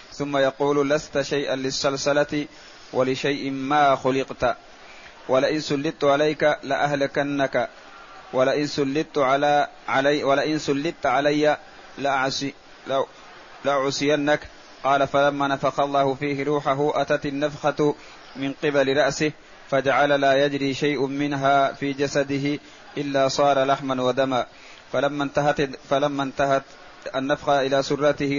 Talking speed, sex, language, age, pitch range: 105 wpm, male, Arabic, 30-49, 135-145 Hz